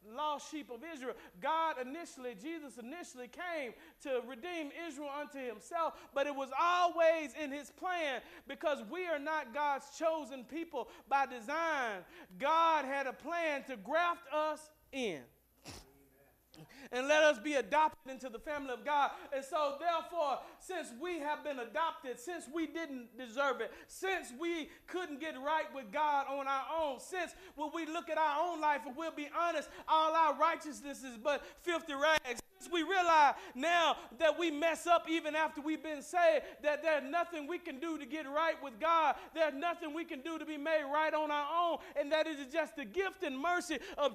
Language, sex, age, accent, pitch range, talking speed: English, male, 40-59, American, 290-340 Hz, 185 wpm